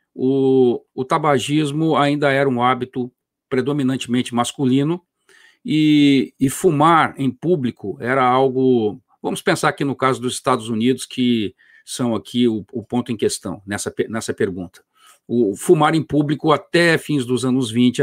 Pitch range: 120-150 Hz